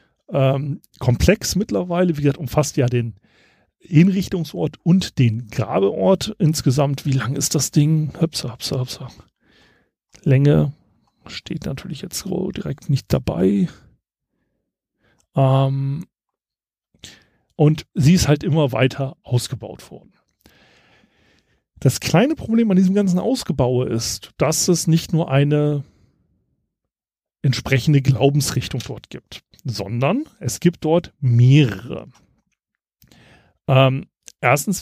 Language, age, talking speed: German, 40-59, 105 wpm